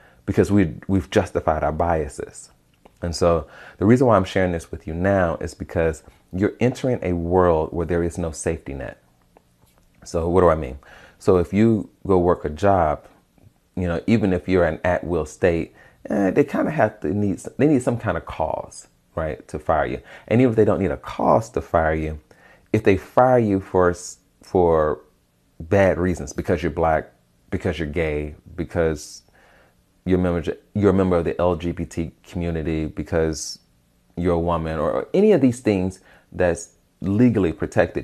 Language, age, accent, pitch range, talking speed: English, 30-49, American, 80-95 Hz, 180 wpm